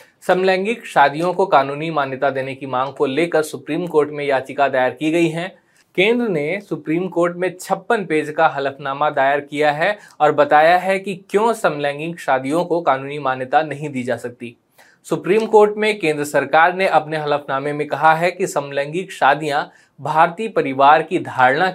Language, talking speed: Hindi, 170 wpm